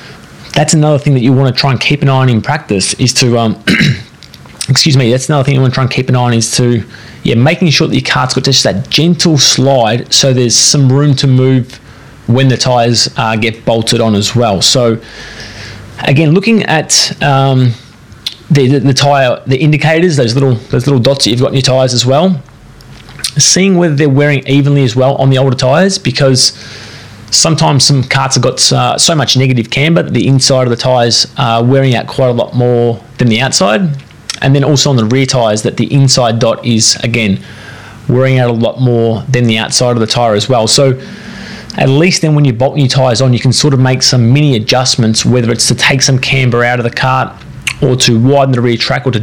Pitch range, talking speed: 120-140 Hz, 225 wpm